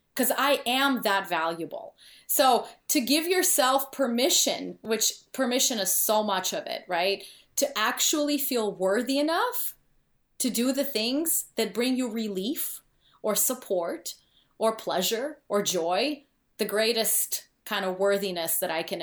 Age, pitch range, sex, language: 30-49, 205-280 Hz, female, English